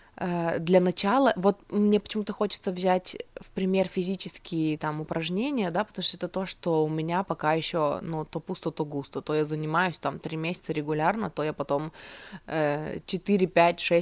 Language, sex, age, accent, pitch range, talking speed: Russian, female, 20-39, native, 155-185 Hz, 165 wpm